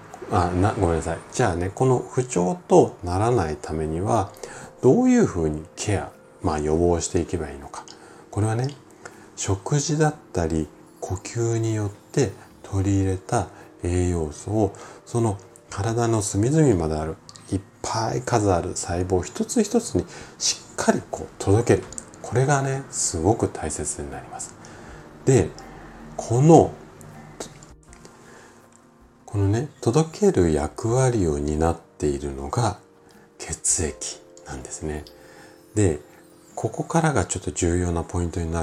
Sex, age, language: male, 40-59, Japanese